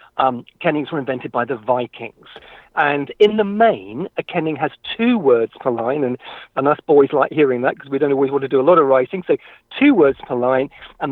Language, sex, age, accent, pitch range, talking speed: English, male, 50-69, British, 150-230 Hz, 225 wpm